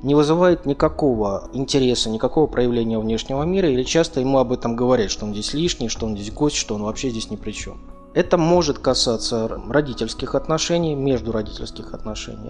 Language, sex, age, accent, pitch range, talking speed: Russian, male, 20-39, native, 115-150 Hz, 180 wpm